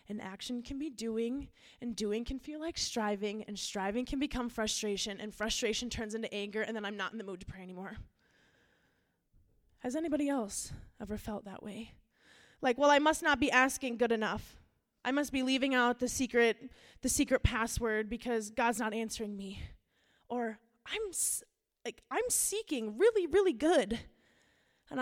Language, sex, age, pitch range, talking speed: English, female, 20-39, 210-260 Hz, 170 wpm